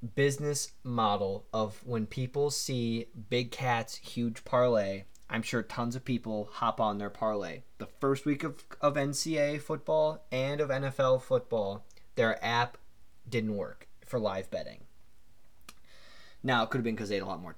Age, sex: 20-39, male